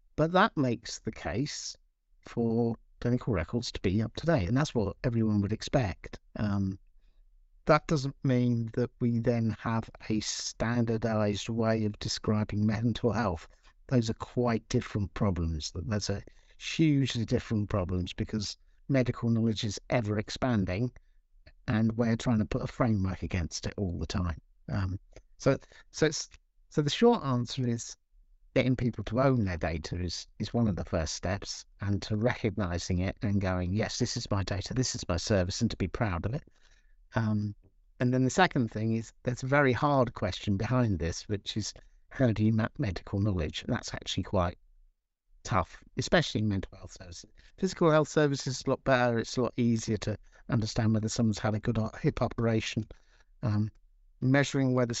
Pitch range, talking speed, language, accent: 100-125 Hz, 170 wpm, English, British